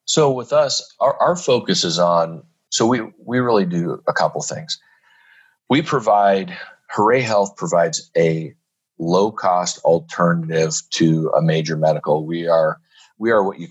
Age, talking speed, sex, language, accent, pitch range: 40-59, 155 wpm, male, English, American, 85-95 Hz